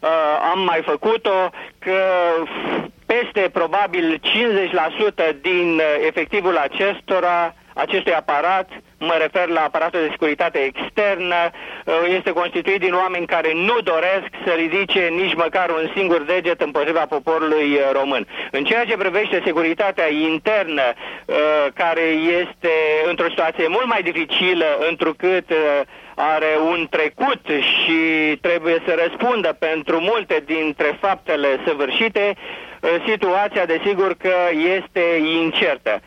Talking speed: 110 wpm